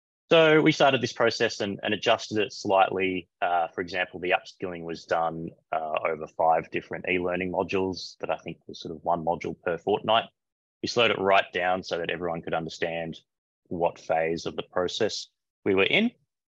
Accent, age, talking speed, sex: Australian, 20-39, 185 wpm, male